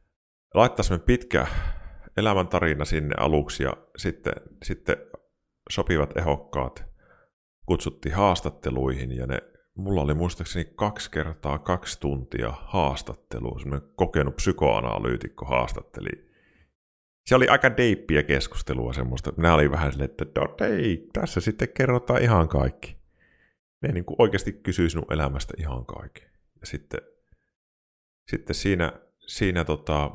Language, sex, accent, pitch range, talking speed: Finnish, male, native, 70-90 Hz, 110 wpm